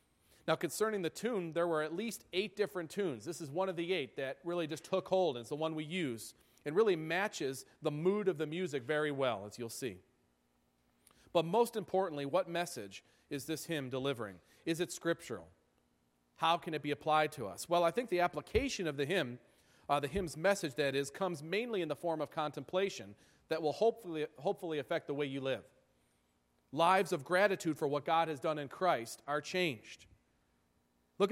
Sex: male